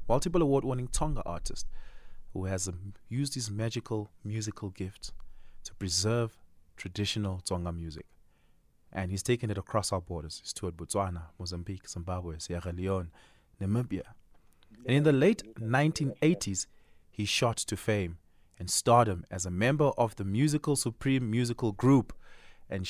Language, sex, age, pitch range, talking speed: English, male, 30-49, 90-110 Hz, 135 wpm